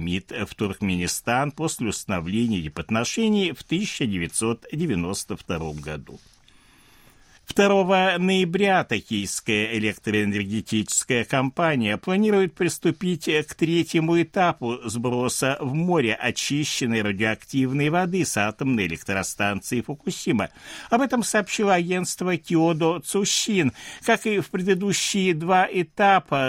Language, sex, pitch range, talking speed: Russian, male, 110-180 Hz, 95 wpm